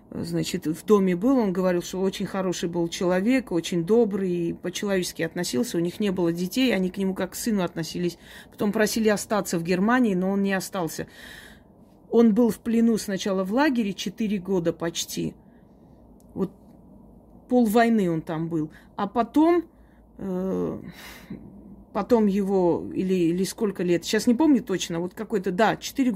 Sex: female